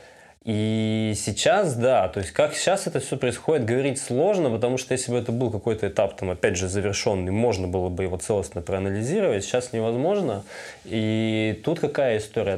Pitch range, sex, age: 100-120 Hz, male, 20-39